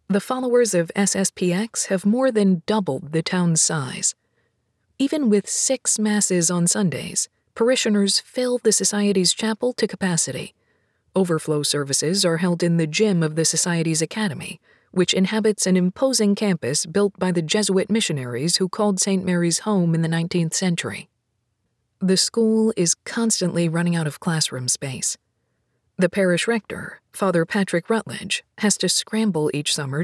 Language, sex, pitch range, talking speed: English, female, 165-210 Hz, 150 wpm